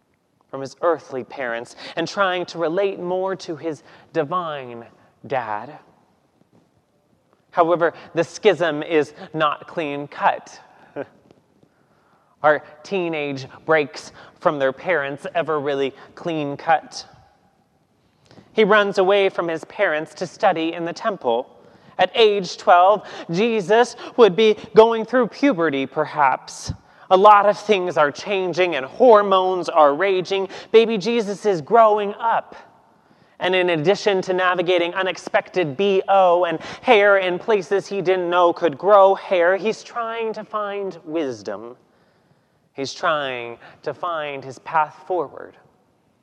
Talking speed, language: 120 wpm, English